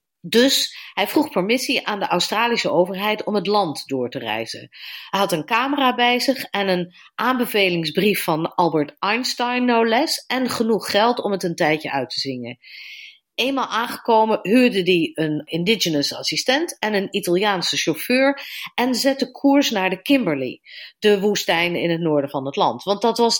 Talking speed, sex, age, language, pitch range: 170 wpm, female, 40-59, Dutch, 175-245 Hz